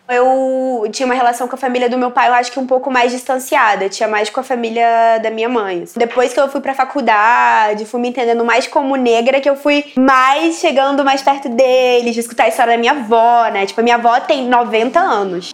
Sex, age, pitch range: female, 20-39, 225-270 Hz